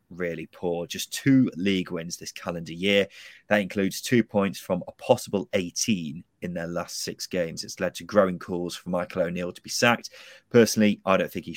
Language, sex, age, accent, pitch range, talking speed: English, male, 30-49, British, 95-130 Hz, 195 wpm